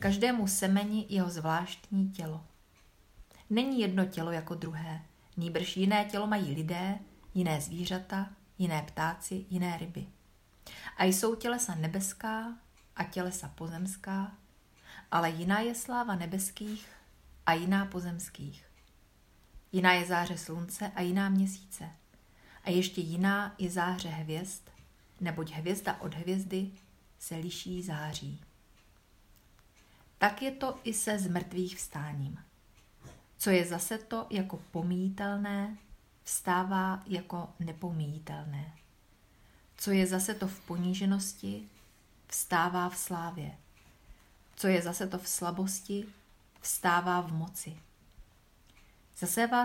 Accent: native